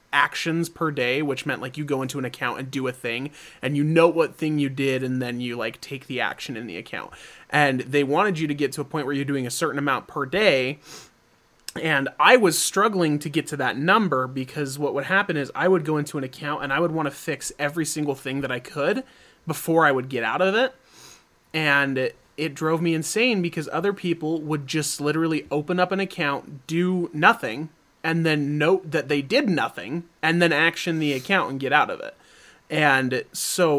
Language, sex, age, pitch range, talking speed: English, male, 30-49, 140-170 Hz, 220 wpm